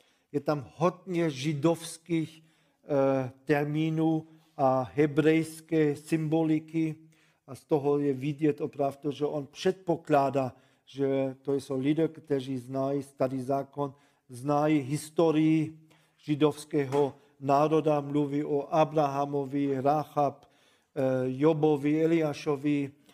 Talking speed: 95 wpm